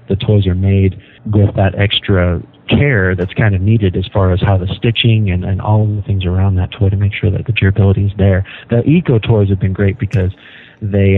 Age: 50-69